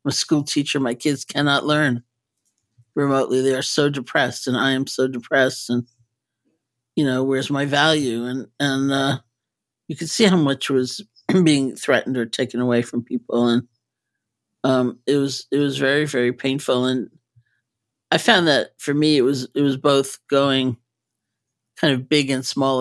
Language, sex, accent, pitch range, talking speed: English, male, American, 120-140 Hz, 175 wpm